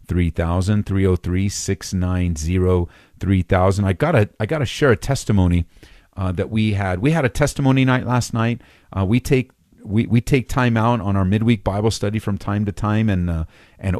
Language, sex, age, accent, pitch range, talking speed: English, male, 40-59, American, 95-120 Hz, 205 wpm